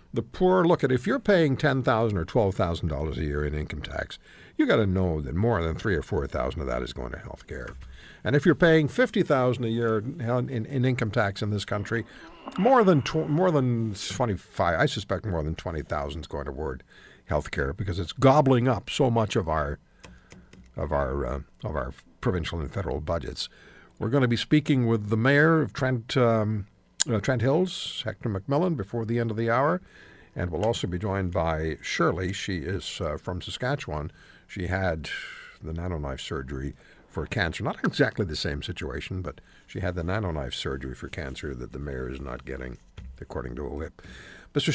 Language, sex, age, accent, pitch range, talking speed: English, male, 60-79, American, 80-130 Hz, 200 wpm